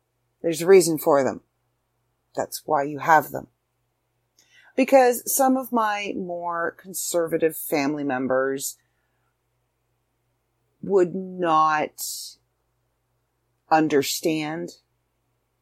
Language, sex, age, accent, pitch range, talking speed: English, female, 40-59, American, 125-180 Hz, 80 wpm